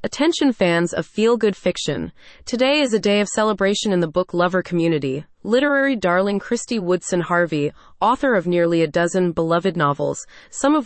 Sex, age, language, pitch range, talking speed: female, 30-49, English, 175-230 Hz, 165 wpm